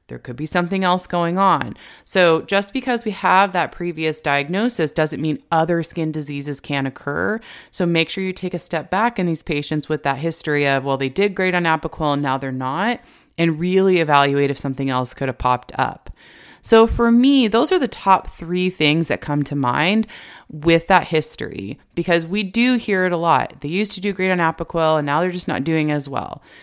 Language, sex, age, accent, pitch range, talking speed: English, female, 30-49, American, 145-185 Hz, 215 wpm